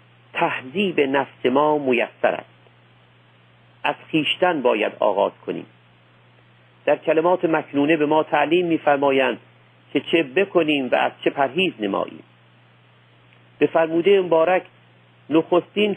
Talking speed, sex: 110 wpm, male